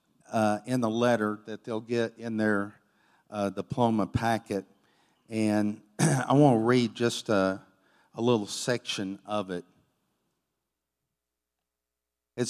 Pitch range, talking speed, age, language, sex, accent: 105-135 Hz, 120 wpm, 50-69, English, male, American